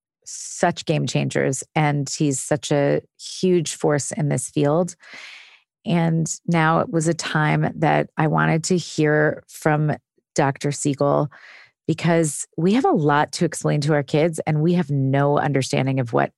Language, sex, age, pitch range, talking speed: English, female, 30-49, 140-165 Hz, 160 wpm